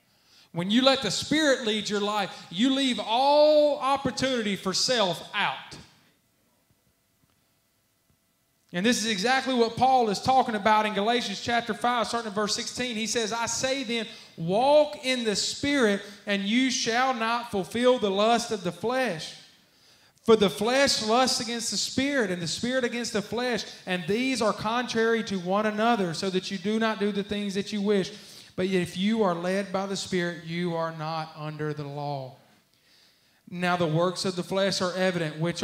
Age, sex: 30-49, male